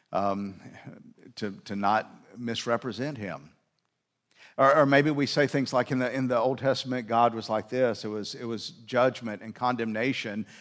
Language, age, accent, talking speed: English, 50-69, American, 170 wpm